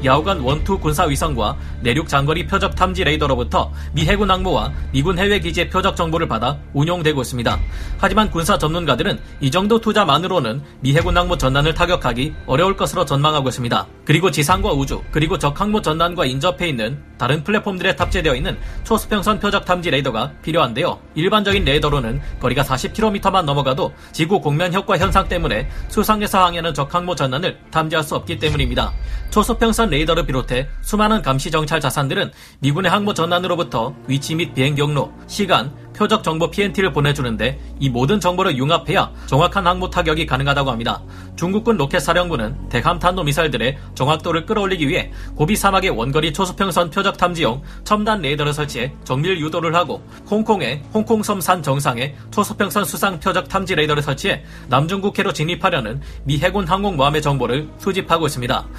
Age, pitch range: 30-49, 135-190 Hz